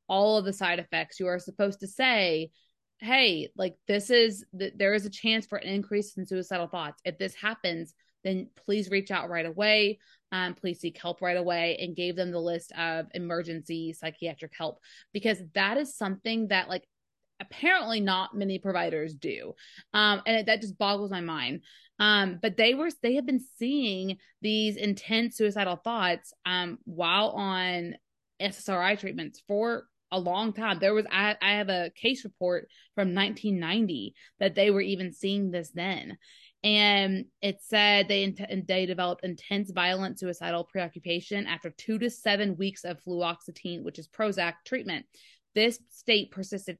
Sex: female